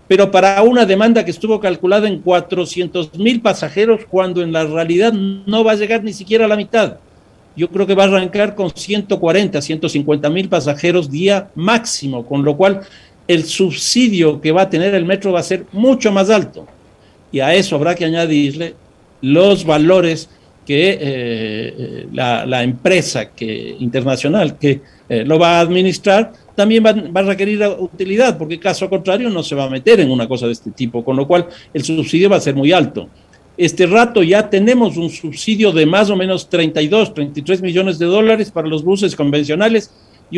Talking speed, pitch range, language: 180 wpm, 155-205 Hz, Spanish